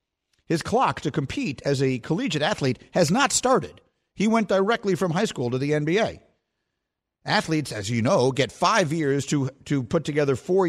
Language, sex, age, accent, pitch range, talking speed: English, male, 50-69, American, 125-165 Hz, 180 wpm